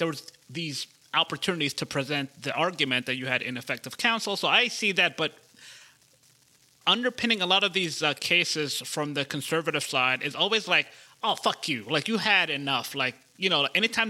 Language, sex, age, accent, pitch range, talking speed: English, male, 30-49, American, 140-180 Hz, 185 wpm